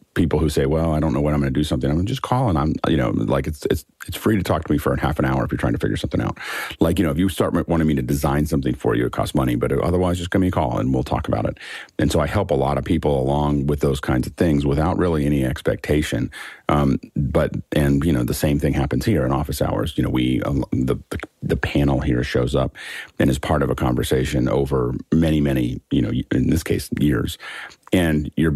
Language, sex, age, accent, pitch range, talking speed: English, male, 40-59, American, 70-80 Hz, 275 wpm